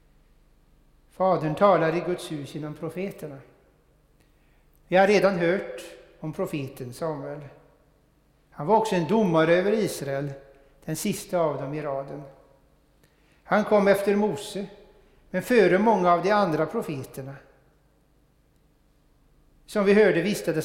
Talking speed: 120 wpm